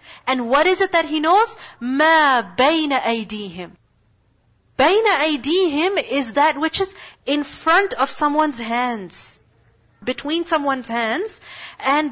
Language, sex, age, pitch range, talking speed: English, female, 40-59, 255-340 Hz, 125 wpm